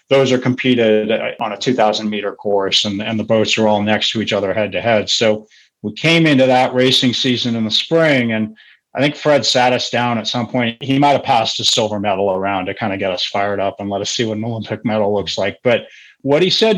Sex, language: male, English